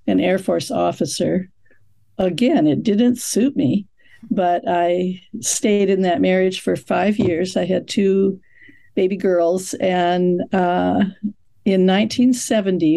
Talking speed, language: 125 wpm, English